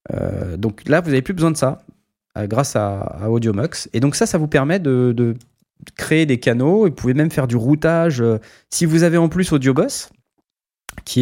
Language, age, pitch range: French, 20-39, 110-140 Hz